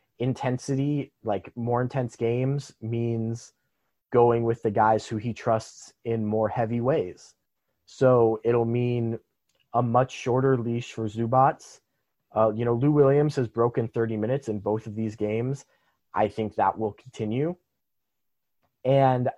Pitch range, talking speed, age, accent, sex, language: 110-130 Hz, 140 wpm, 30-49, American, male, English